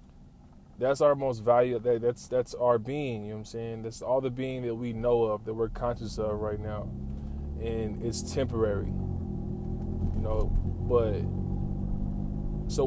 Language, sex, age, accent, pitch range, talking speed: English, male, 20-39, American, 100-125 Hz, 160 wpm